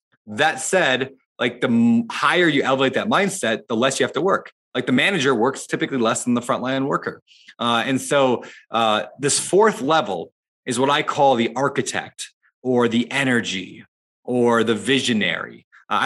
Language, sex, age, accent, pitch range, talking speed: English, male, 20-39, American, 115-160 Hz, 170 wpm